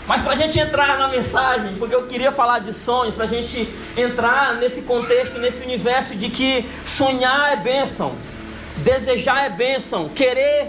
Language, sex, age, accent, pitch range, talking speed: Portuguese, male, 20-39, Brazilian, 225-275 Hz, 170 wpm